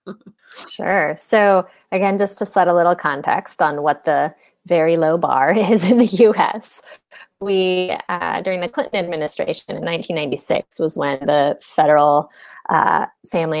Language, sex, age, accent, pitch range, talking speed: English, female, 20-39, American, 170-240 Hz, 145 wpm